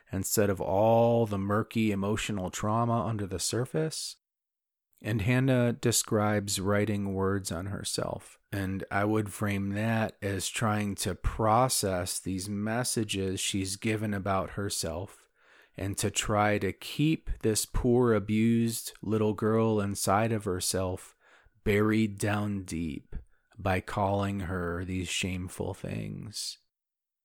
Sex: male